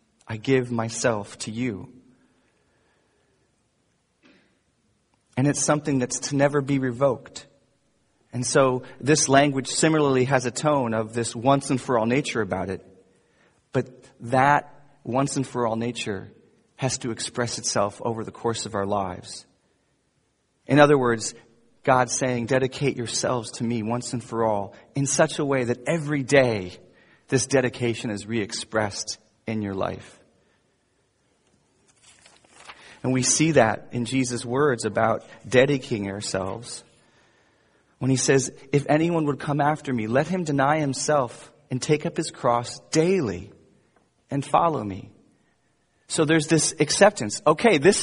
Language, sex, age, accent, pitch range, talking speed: English, male, 30-49, American, 115-145 Hz, 140 wpm